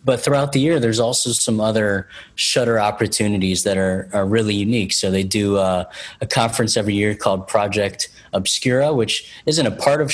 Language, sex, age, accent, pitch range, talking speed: English, male, 20-39, American, 95-115 Hz, 185 wpm